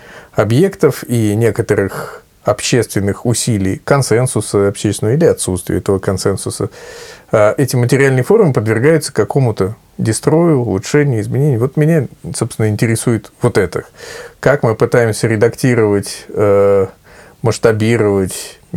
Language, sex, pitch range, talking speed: Russian, male, 100-140 Hz, 95 wpm